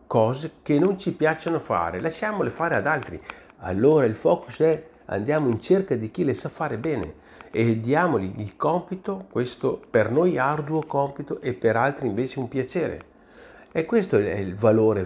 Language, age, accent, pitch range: Italian, 50-69, native, 100-155 Hz